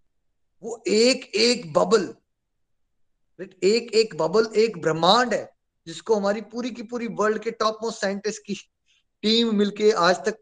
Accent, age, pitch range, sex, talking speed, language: native, 20-39, 175-235 Hz, male, 145 wpm, Hindi